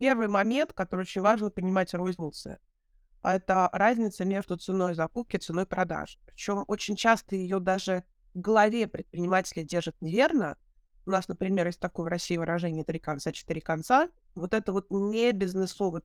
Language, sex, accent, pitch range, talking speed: Russian, female, native, 175-215 Hz, 160 wpm